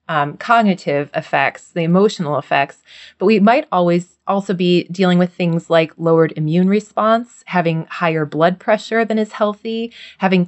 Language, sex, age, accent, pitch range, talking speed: English, female, 20-39, American, 165-195 Hz, 155 wpm